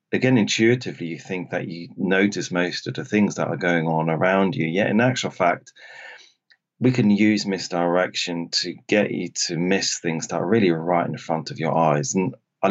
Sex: male